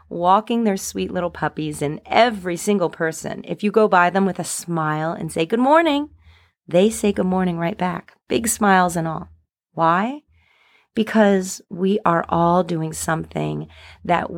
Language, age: English, 30-49